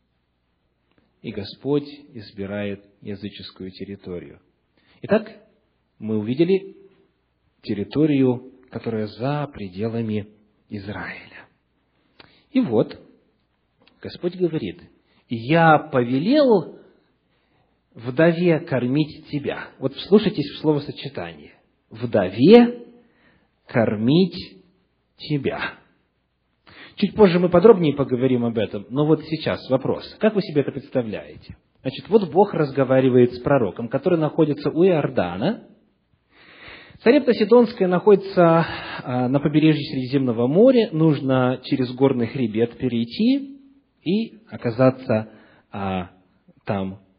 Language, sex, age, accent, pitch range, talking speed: Russian, male, 40-59, native, 110-180 Hz, 90 wpm